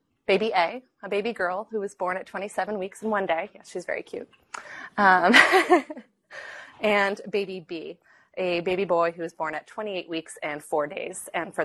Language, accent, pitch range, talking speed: English, American, 160-205 Hz, 185 wpm